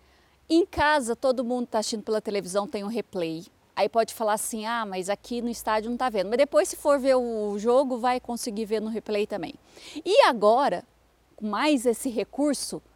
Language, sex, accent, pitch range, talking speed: Portuguese, female, Brazilian, 215-270 Hz, 190 wpm